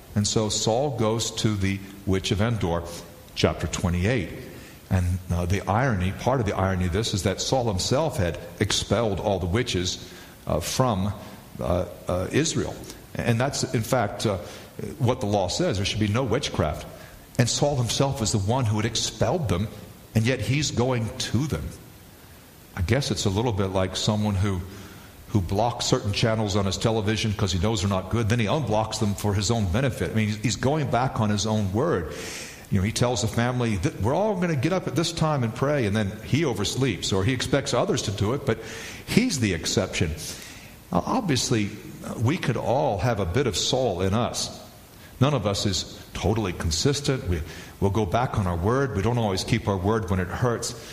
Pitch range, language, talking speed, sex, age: 100-125 Hz, English, 200 wpm, male, 50-69